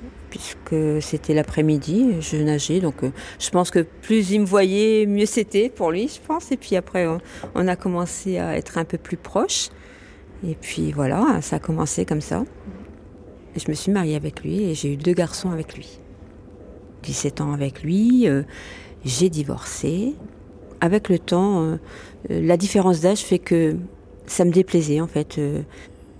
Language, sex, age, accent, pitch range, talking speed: French, female, 40-59, French, 145-180 Hz, 175 wpm